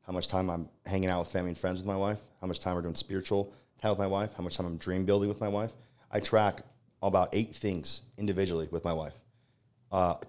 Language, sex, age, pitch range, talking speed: English, male, 30-49, 90-110 Hz, 245 wpm